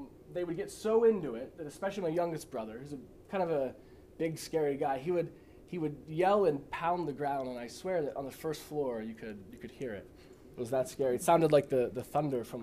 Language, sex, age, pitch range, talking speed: English, male, 20-39, 130-175 Hz, 250 wpm